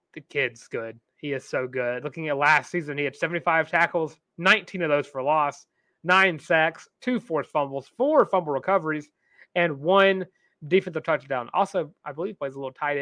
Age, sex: 30-49, male